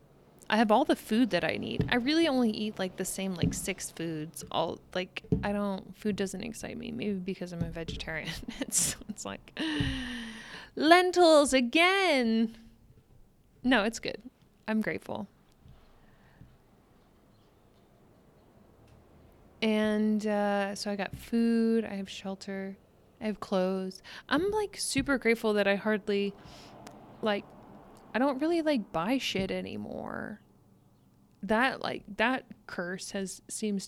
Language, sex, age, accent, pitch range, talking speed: English, female, 20-39, American, 190-235 Hz, 130 wpm